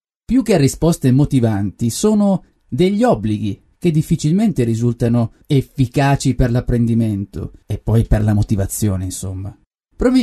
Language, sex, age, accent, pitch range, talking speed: Italian, male, 30-49, native, 115-170 Hz, 115 wpm